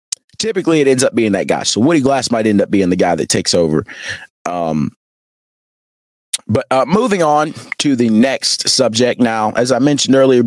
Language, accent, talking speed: English, American, 190 wpm